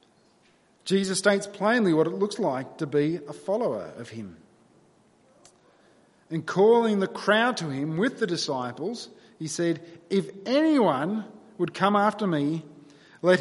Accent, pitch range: Australian, 145-210 Hz